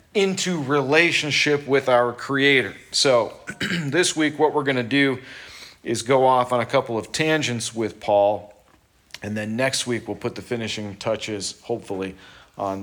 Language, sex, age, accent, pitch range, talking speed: English, male, 40-59, American, 115-150 Hz, 160 wpm